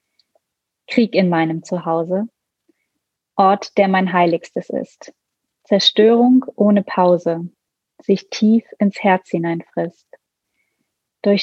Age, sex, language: 30-49, female, German